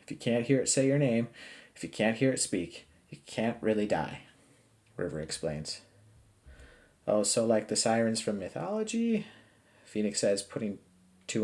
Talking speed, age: 165 wpm, 30-49